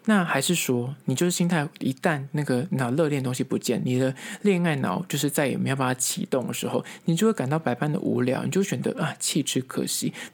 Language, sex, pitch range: Chinese, male, 130-185 Hz